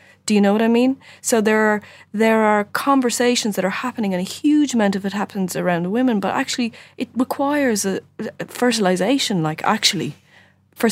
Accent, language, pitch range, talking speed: Irish, English, 185-230 Hz, 185 wpm